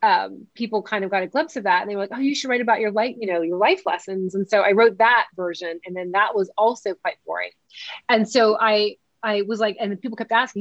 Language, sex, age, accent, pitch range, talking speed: English, female, 30-49, American, 185-220 Hz, 270 wpm